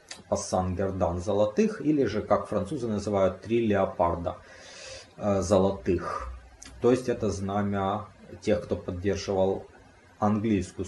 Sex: male